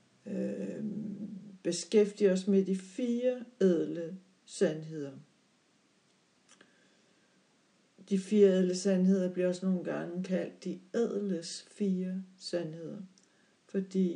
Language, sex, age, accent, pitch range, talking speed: Danish, female, 60-79, native, 185-210 Hz, 90 wpm